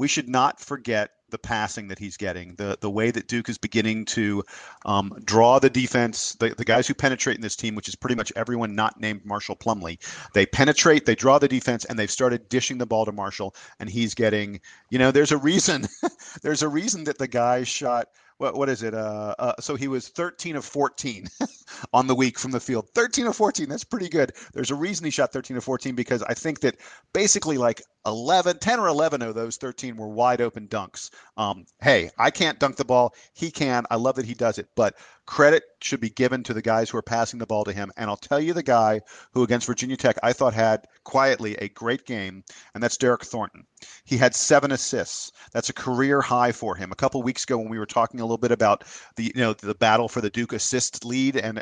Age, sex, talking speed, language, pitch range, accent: 40-59, male, 230 wpm, English, 110-135 Hz, American